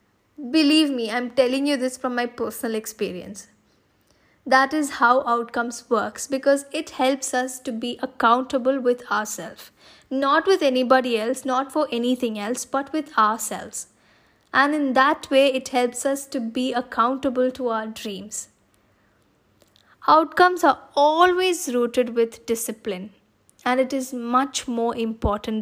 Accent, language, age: Indian, English, 10-29